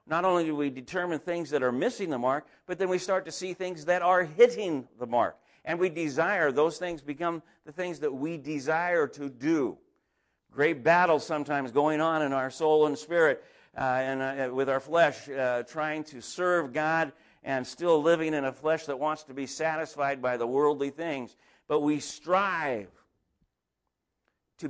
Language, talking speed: English, 185 wpm